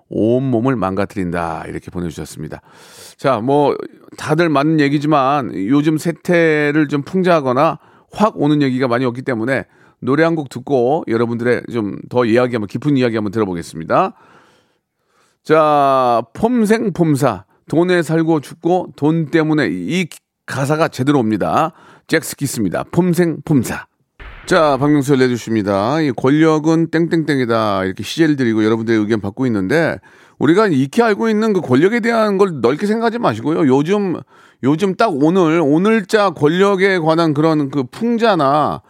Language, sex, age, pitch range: Korean, male, 40-59, 130-180 Hz